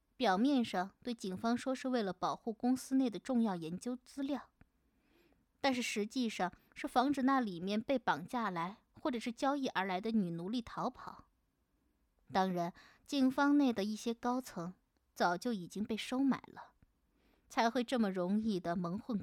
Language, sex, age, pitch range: Chinese, female, 20-39, 195-255 Hz